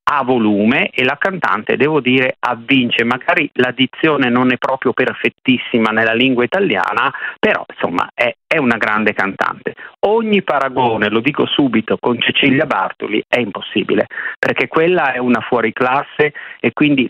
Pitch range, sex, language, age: 115-145 Hz, male, Italian, 40-59